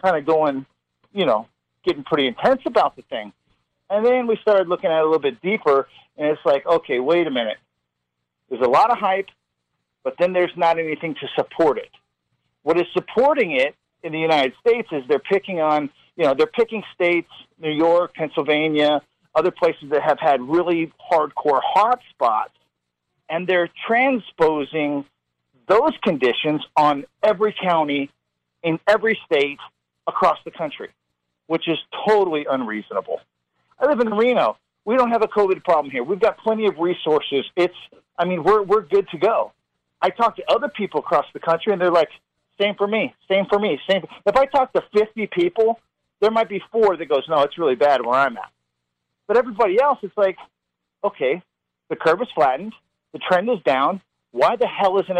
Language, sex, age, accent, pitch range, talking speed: English, male, 50-69, American, 150-210 Hz, 185 wpm